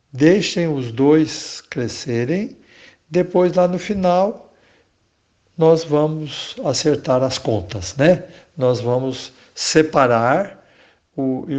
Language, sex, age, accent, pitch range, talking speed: Portuguese, male, 60-79, Brazilian, 125-165 Hz, 95 wpm